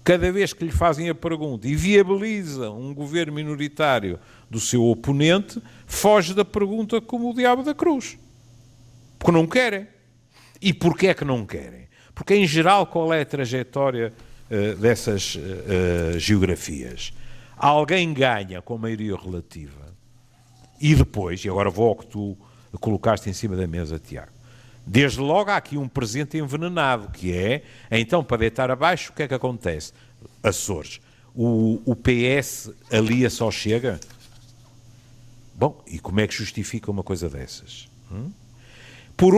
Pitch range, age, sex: 110-150 Hz, 50-69, male